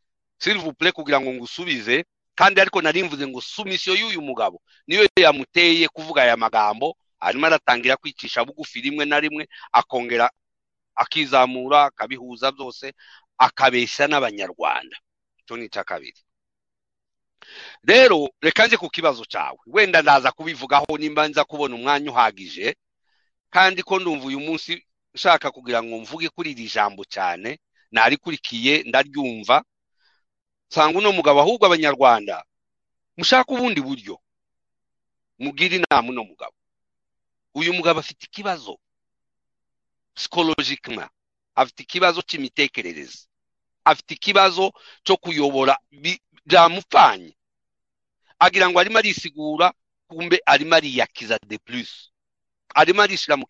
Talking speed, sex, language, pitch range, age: 105 wpm, male, English, 135-185 Hz, 50-69